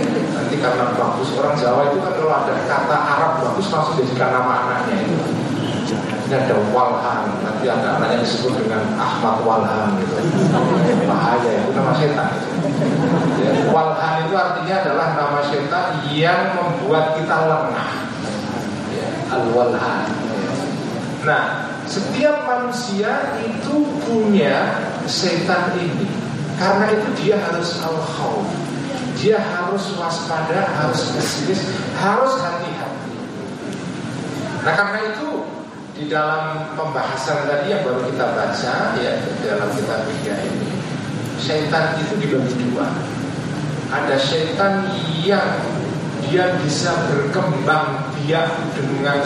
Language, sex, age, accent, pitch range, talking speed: Indonesian, male, 40-59, native, 145-185 Hz, 115 wpm